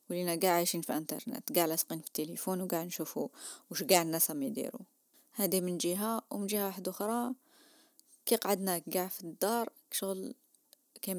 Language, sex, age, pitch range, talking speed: Arabic, female, 20-39, 170-235 Hz, 160 wpm